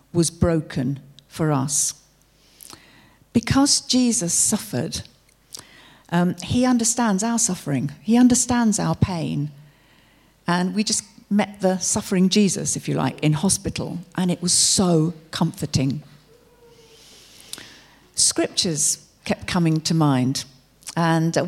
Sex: female